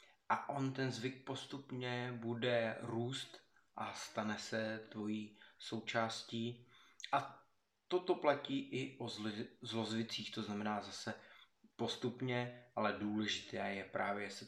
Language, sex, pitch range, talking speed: Czech, male, 105-125 Hz, 110 wpm